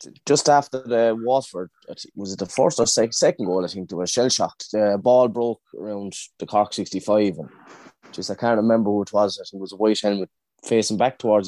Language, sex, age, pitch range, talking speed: English, male, 20-39, 100-125 Hz, 215 wpm